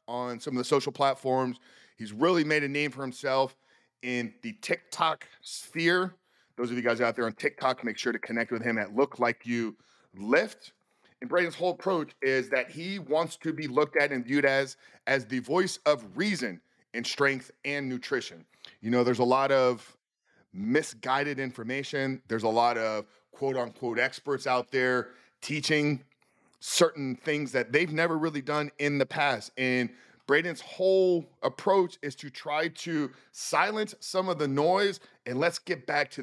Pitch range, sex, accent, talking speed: 120-150 Hz, male, American, 175 wpm